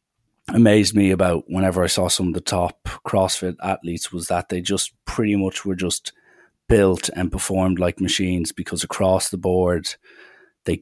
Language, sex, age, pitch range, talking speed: English, male, 30-49, 90-95 Hz, 165 wpm